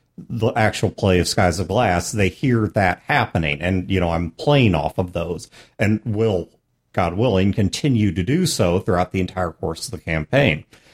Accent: American